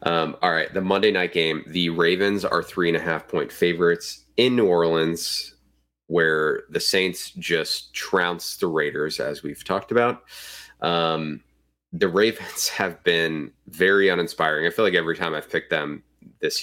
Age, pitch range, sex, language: 30-49, 80-95 Hz, male, English